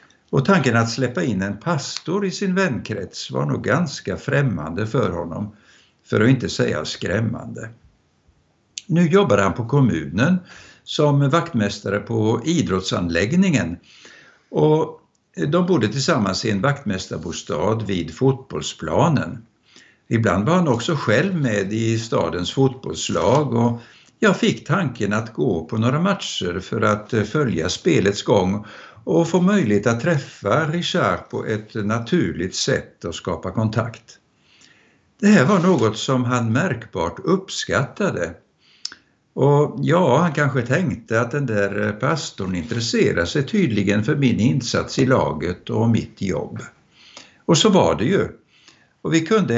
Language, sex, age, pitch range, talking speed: Swedish, male, 60-79, 100-150 Hz, 135 wpm